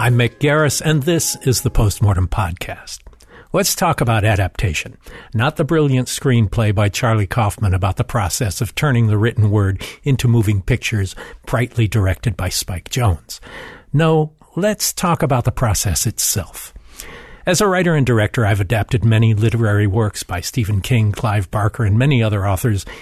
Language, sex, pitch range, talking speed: English, male, 105-140 Hz, 160 wpm